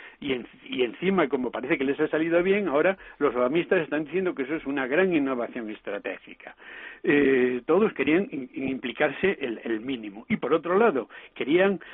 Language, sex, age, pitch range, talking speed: Spanish, male, 60-79, 125-185 Hz, 170 wpm